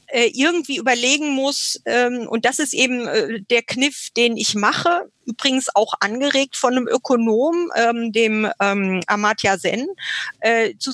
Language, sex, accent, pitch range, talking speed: German, female, German, 220-275 Hz, 120 wpm